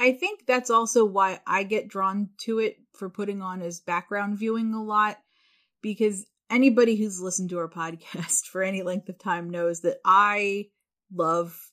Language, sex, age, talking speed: English, female, 30-49, 175 wpm